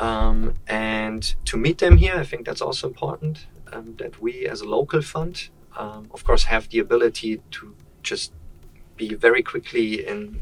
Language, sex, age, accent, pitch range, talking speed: English, male, 30-49, German, 95-145 Hz, 175 wpm